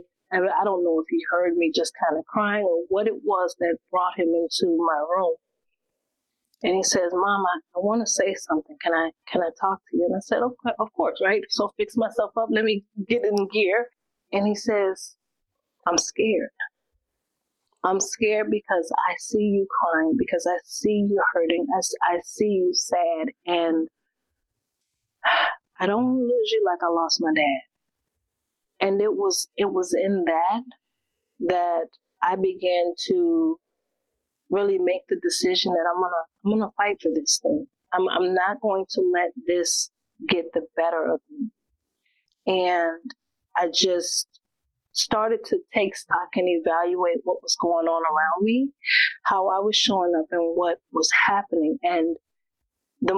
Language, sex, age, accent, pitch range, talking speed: English, female, 30-49, American, 175-250 Hz, 165 wpm